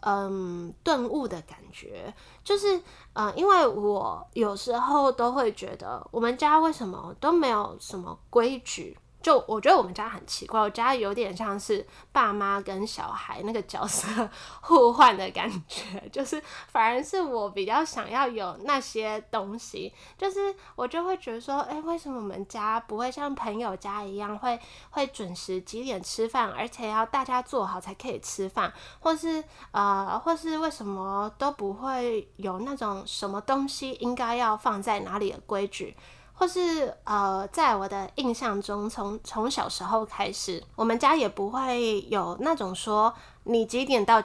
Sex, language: female, Chinese